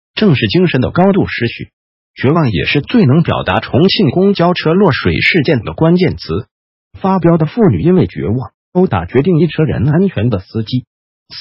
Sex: male